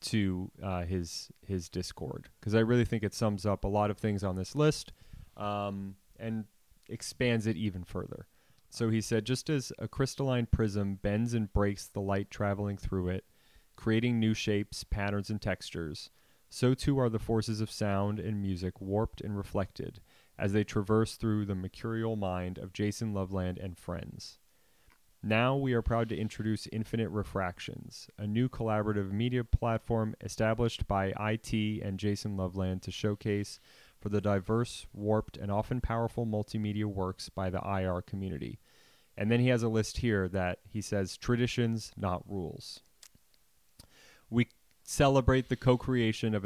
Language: English